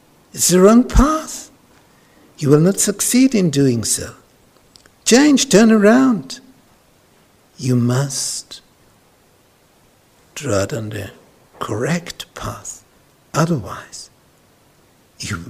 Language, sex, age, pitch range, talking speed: English, male, 60-79, 125-195 Hz, 95 wpm